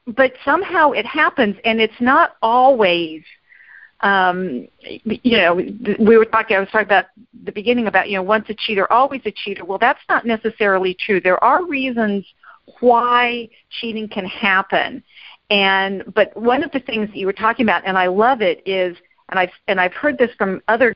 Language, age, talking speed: English, 50-69, 185 wpm